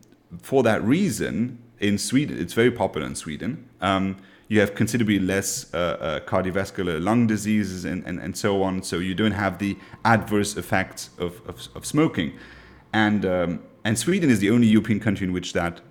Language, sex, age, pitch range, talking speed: Czech, male, 30-49, 95-115 Hz, 180 wpm